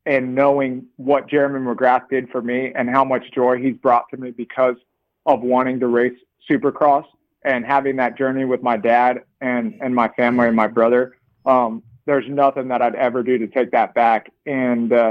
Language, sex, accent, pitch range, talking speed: English, male, American, 125-135 Hz, 190 wpm